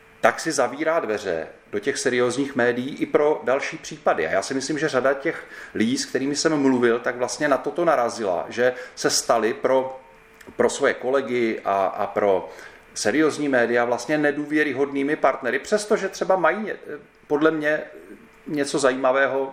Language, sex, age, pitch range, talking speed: Czech, male, 40-59, 125-160 Hz, 155 wpm